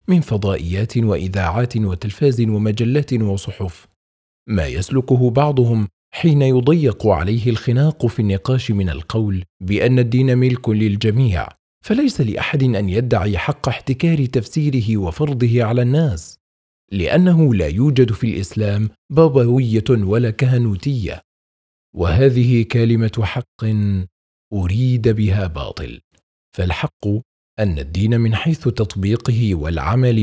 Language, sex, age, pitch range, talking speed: Arabic, male, 40-59, 100-130 Hz, 105 wpm